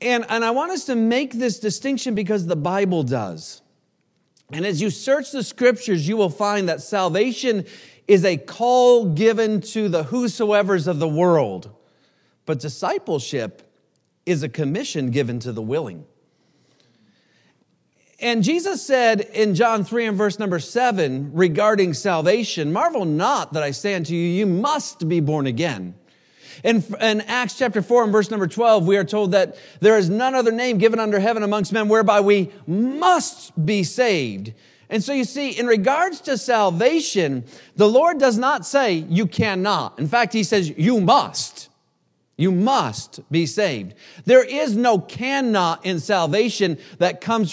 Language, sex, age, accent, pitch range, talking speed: English, male, 40-59, American, 170-230 Hz, 160 wpm